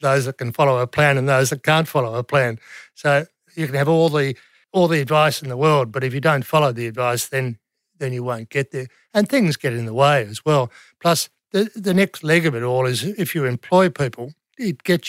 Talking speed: 245 wpm